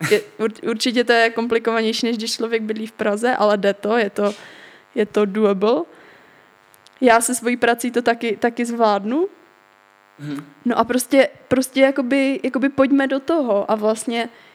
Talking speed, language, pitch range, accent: 160 wpm, Czech, 225-250 Hz, native